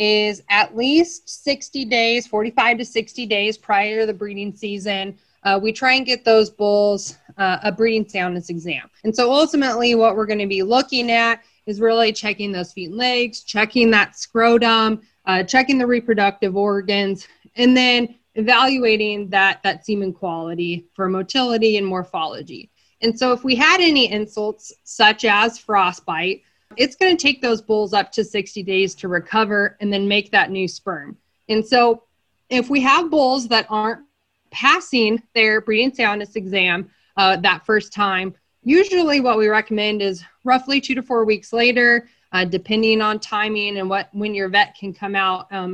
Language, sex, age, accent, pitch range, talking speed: English, female, 20-39, American, 200-240 Hz, 170 wpm